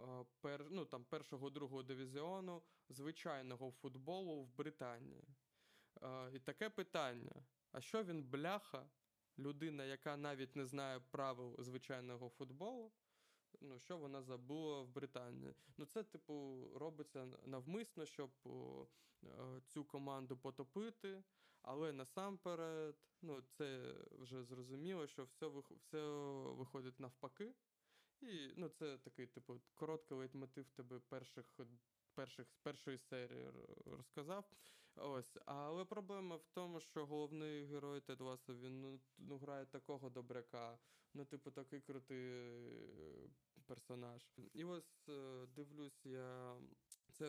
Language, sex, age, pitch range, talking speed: Ukrainian, male, 20-39, 130-155 Hz, 115 wpm